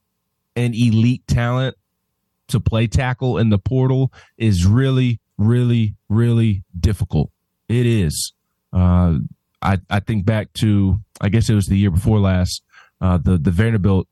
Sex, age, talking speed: male, 20-39, 145 wpm